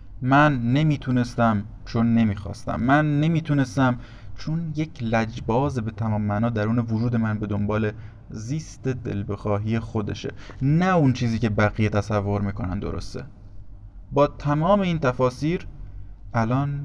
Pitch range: 100-125 Hz